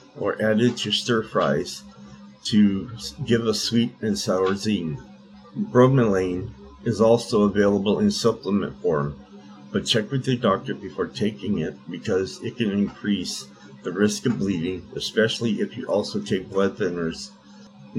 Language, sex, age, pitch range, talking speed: English, male, 50-69, 95-120 Hz, 145 wpm